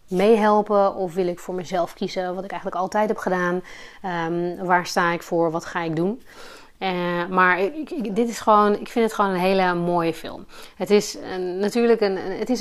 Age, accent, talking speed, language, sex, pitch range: 30-49, Dutch, 190 wpm, Dutch, female, 175-205 Hz